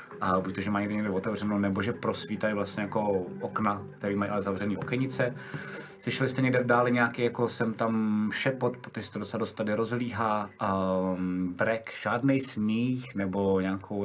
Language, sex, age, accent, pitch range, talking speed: Czech, male, 20-39, native, 95-105 Hz, 170 wpm